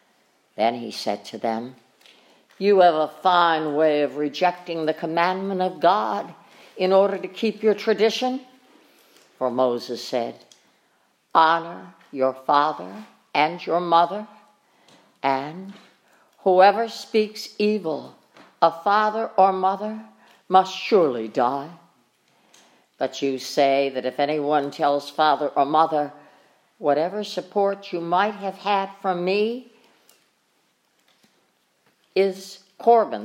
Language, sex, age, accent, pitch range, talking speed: English, female, 60-79, American, 145-210 Hz, 110 wpm